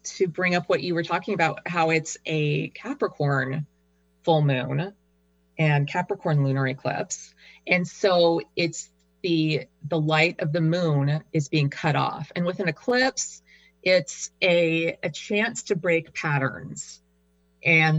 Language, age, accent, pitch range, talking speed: English, 30-49, American, 145-175 Hz, 145 wpm